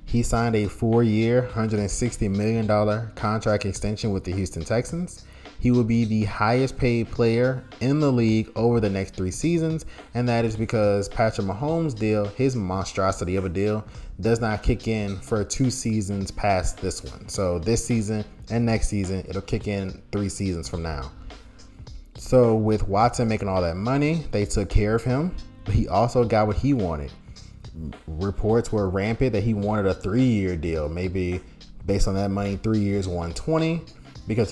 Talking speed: 175 wpm